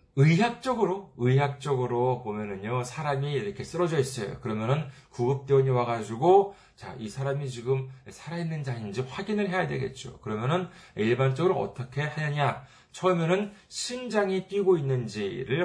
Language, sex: Korean, male